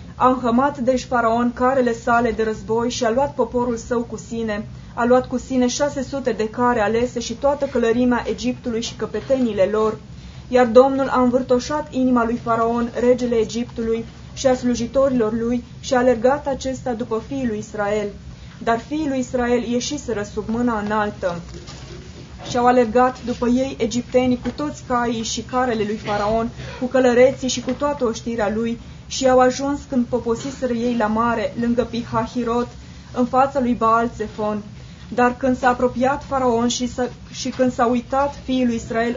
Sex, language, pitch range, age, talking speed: female, Romanian, 230-255 Hz, 20-39, 165 wpm